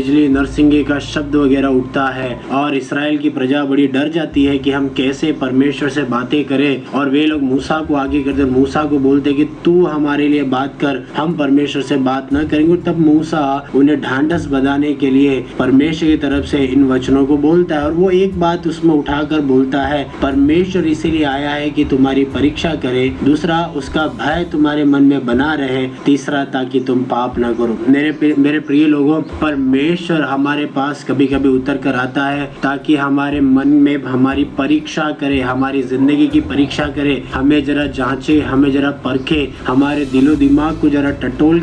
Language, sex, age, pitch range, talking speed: Hindi, male, 20-39, 135-155 Hz, 165 wpm